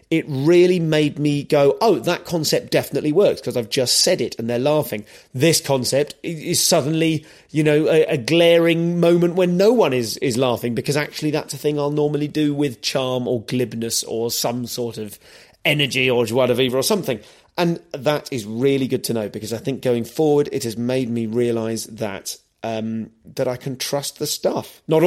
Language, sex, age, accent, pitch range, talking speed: English, male, 30-49, British, 130-175 Hz, 195 wpm